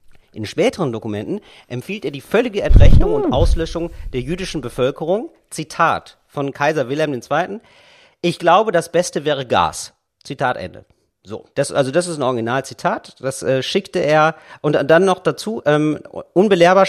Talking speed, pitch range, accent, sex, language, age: 155 wpm, 130-180 Hz, German, male, German, 40-59